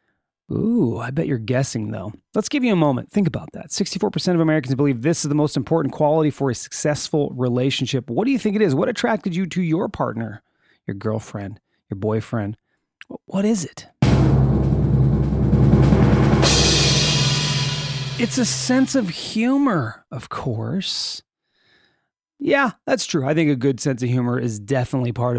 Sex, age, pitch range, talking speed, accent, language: male, 30-49, 125-175 Hz, 160 wpm, American, English